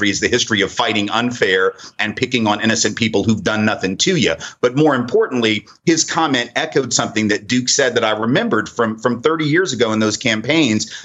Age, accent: 40-59, American